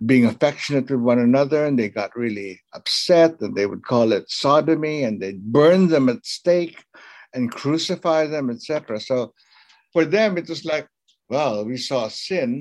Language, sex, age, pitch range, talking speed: English, male, 60-79, 115-160 Hz, 170 wpm